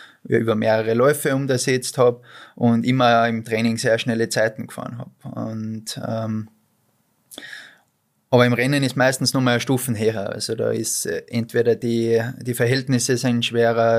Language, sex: German, male